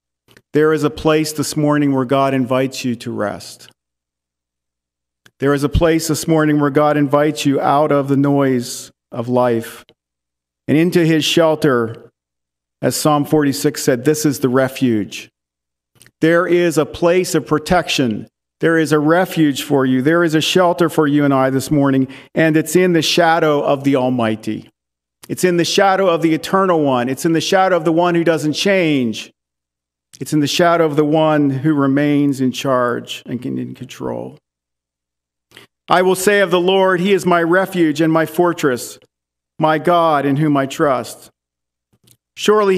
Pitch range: 125-170 Hz